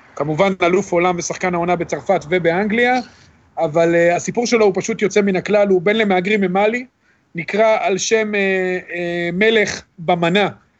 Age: 40-59